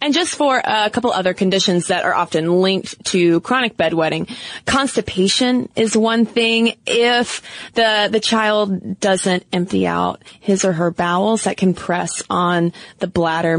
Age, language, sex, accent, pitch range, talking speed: 20-39, English, female, American, 180-240 Hz, 155 wpm